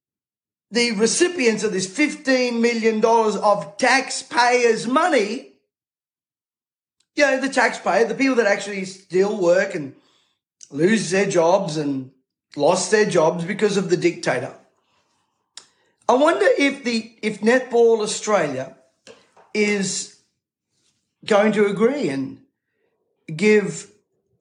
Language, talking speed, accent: English, 110 wpm, Australian